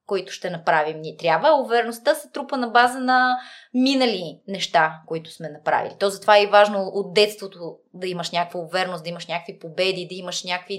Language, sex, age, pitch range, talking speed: Bulgarian, female, 20-39, 190-250 Hz, 185 wpm